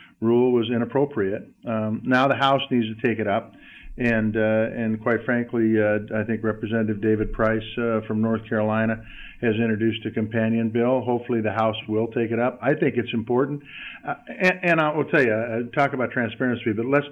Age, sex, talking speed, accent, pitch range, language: 50-69, male, 195 wpm, American, 110-130 Hz, English